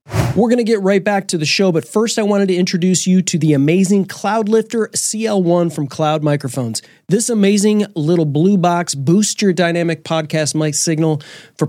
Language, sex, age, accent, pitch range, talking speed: English, male, 30-49, American, 130-175 Hz, 185 wpm